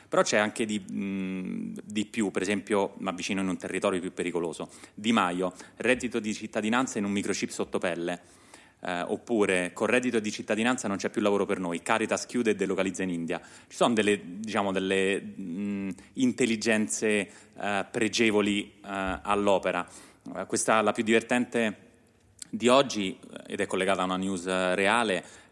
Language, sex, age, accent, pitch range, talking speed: Italian, male, 30-49, native, 95-115 Hz, 150 wpm